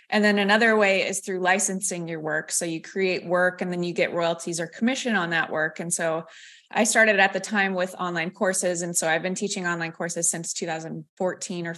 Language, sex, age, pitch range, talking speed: English, female, 20-39, 170-205 Hz, 220 wpm